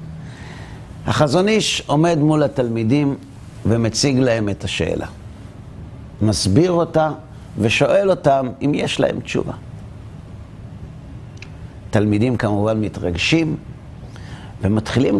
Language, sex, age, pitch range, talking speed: Hebrew, male, 50-69, 105-165 Hz, 85 wpm